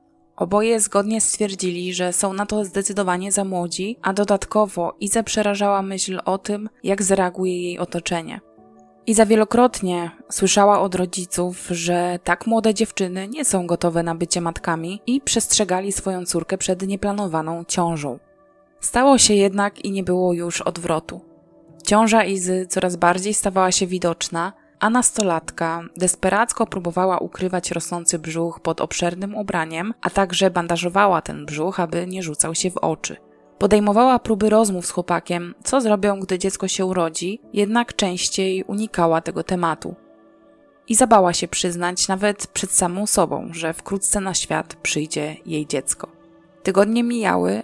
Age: 20-39